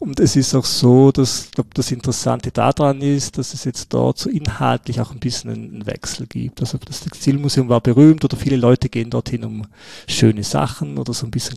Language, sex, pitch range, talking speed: German, male, 105-135 Hz, 210 wpm